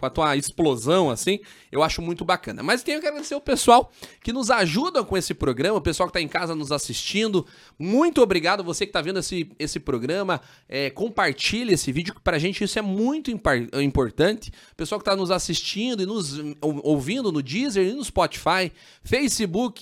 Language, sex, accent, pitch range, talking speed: Portuguese, male, Brazilian, 170-225 Hz, 205 wpm